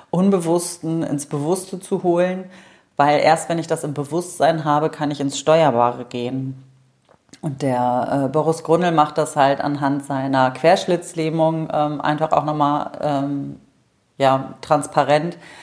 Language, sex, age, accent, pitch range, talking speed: German, female, 40-59, German, 140-160 Hz, 140 wpm